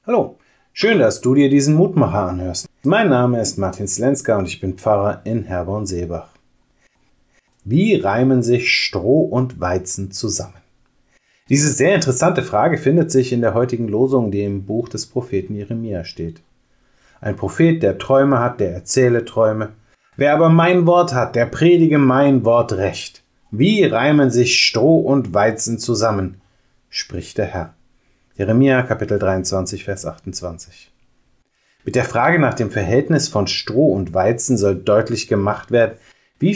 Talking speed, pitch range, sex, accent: 150 wpm, 100-130 Hz, male, German